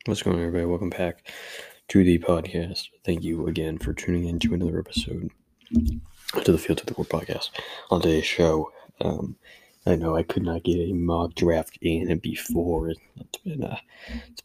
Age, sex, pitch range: 20-39, male, 80-85 Hz